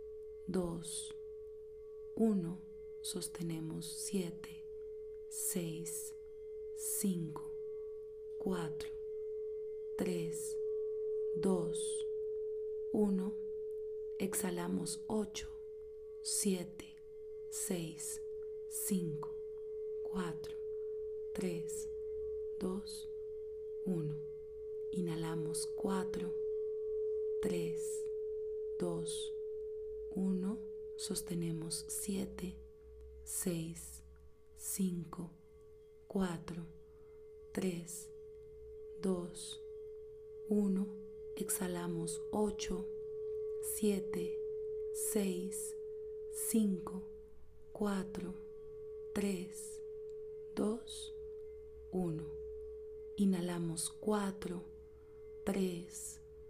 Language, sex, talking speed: Spanish, female, 50 wpm